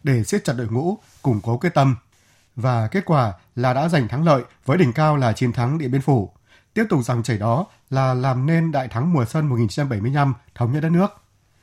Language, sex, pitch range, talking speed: Vietnamese, male, 120-155 Hz, 220 wpm